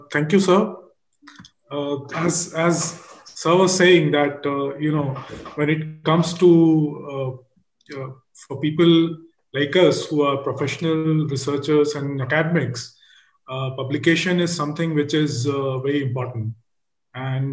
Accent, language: Indian, English